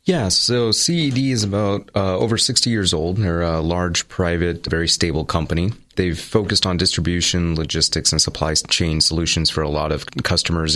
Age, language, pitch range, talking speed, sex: 30-49, English, 75-90 Hz, 180 wpm, male